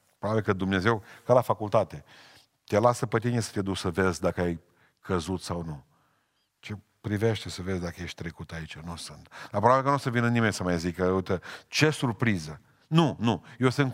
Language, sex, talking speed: Romanian, male, 205 wpm